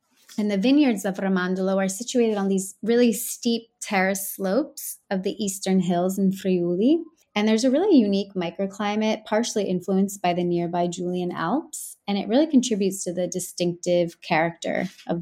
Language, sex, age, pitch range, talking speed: English, female, 20-39, 180-215 Hz, 160 wpm